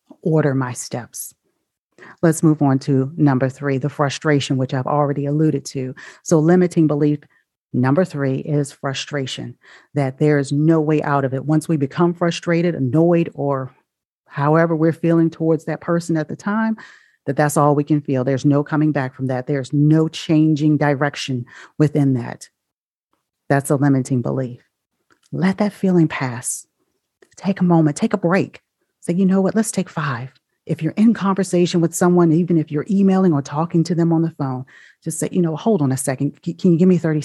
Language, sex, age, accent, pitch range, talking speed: English, female, 40-59, American, 140-170 Hz, 185 wpm